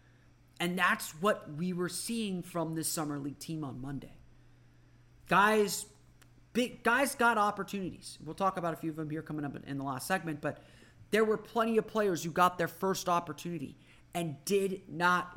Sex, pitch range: male, 150-195 Hz